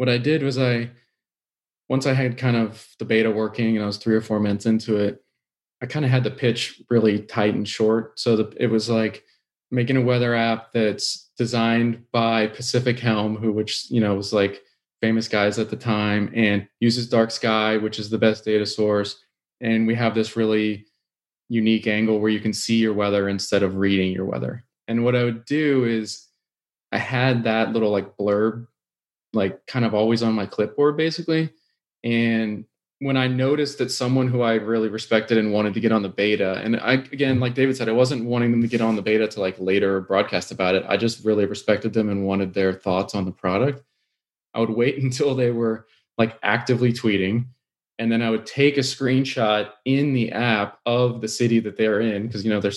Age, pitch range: 20-39, 105-120 Hz